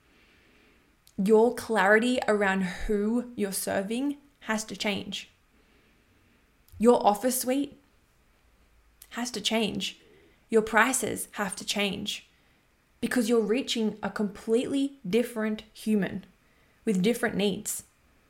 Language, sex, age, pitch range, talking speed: English, female, 20-39, 205-240 Hz, 100 wpm